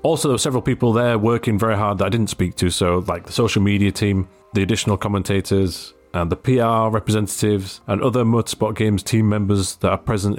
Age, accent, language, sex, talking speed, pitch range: 30-49, British, English, male, 210 wpm, 100-125 Hz